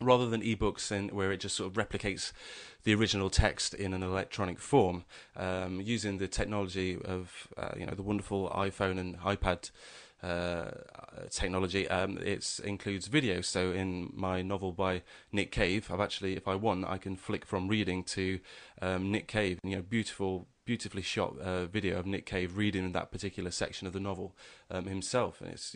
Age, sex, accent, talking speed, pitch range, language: 20-39, male, British, 185 wpm, 95-105 Hz, English